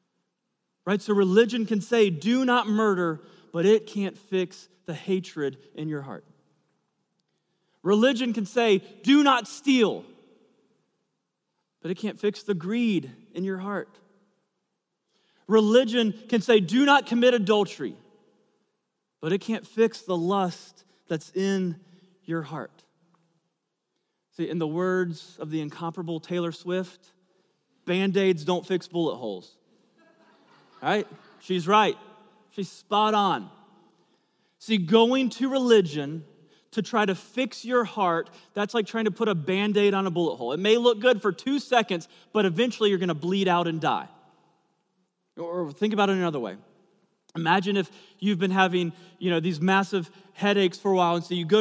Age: 30-49